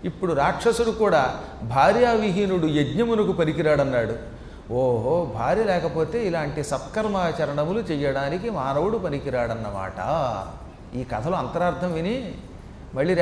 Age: 30-49